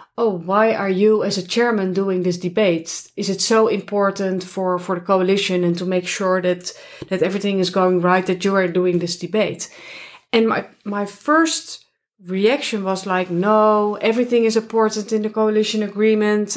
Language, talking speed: English, 180 wpm